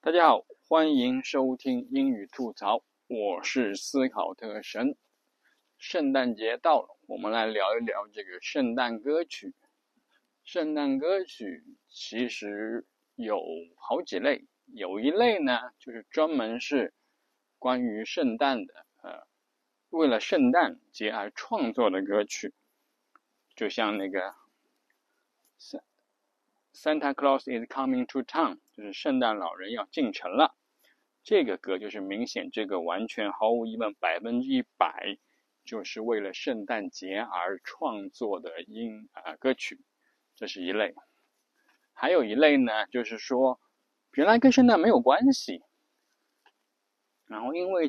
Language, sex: Chinese, male